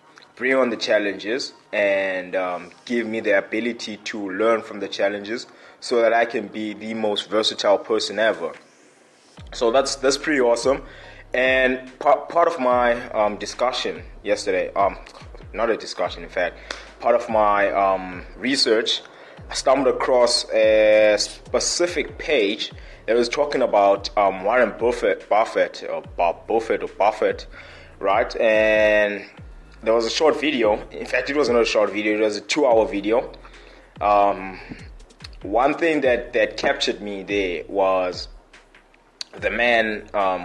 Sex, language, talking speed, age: male, English, 145 wpm, 20-39